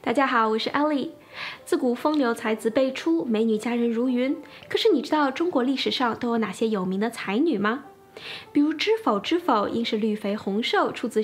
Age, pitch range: 10-29, 225-310 Hz